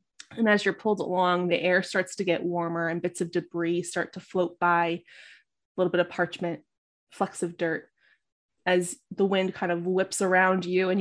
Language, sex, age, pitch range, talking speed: English, female, 20-39, 170-195 Hz, 195 wpm